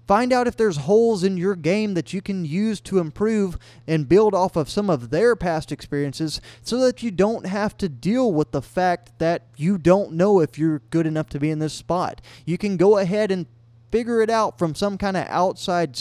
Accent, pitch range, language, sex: American, 145-195 Hz, English, male